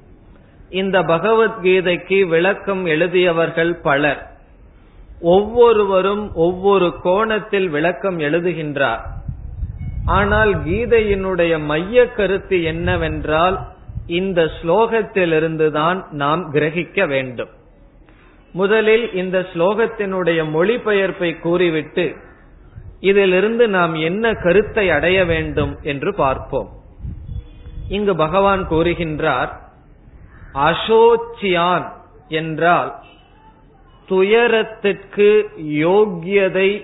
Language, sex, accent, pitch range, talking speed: Tamil, male, native, 155-195 Hz, 65 wpm